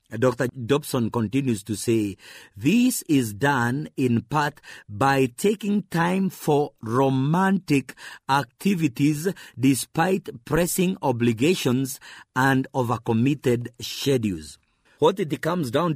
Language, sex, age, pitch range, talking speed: English, male, 50-69, 120-155 Hz, 100 wpm